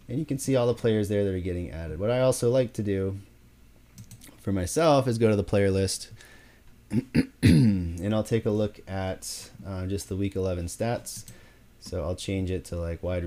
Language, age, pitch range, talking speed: English, 30-49, 90-115 Hz, 205 wpm